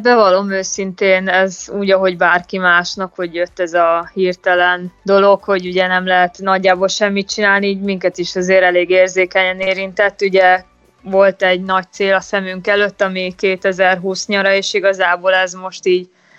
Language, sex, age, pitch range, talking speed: Hungarian, female, 20-39, 180-195 Hz, 155 wpm